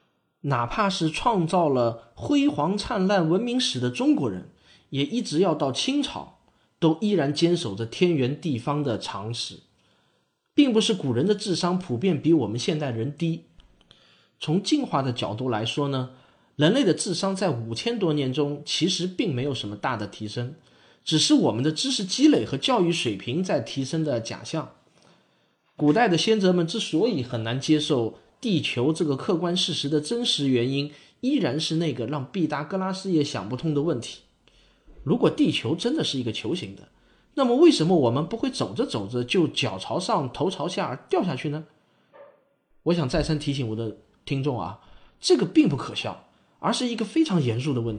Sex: male